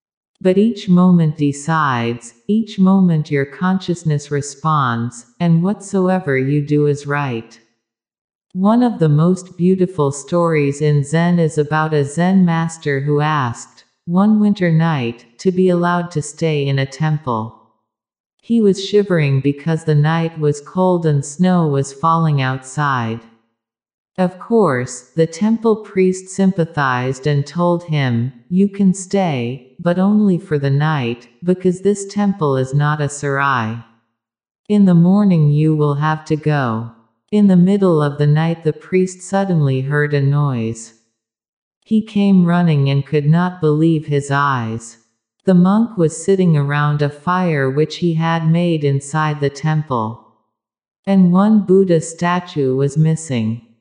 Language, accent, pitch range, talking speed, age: English, American, 135-180 Hz, 140 wpm, 50-69